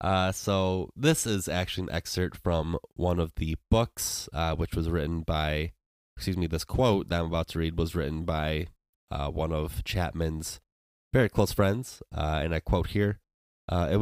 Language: English